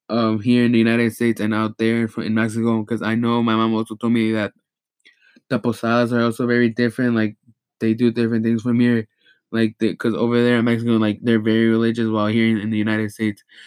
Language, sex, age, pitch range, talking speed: English, male, 20-39, 110-125 Hz, 230 wpm